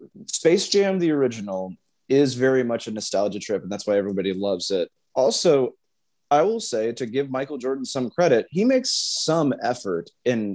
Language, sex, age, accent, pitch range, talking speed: English, male, 30-49, American, 105-150 Hz, 175 wpm